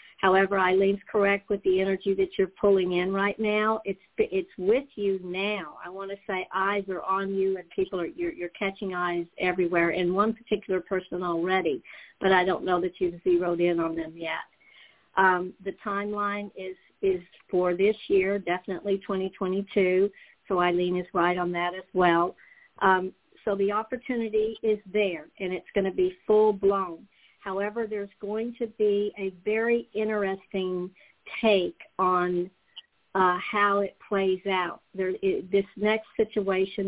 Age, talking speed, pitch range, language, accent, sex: 60-79, 160 wpm, 180-205 Hz, English, American, female